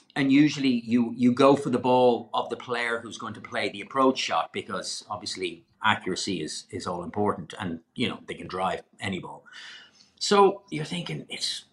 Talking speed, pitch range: 190 wpm, 120-175 Hz